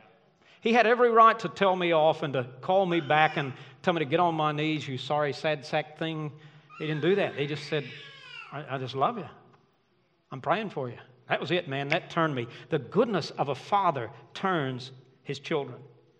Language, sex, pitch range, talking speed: English, male, 150-205 Hz, 210 wpm